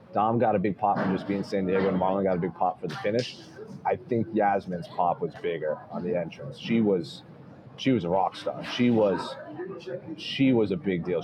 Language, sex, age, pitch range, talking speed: English, male, 30-49, 100-130 Hz, 225 wpm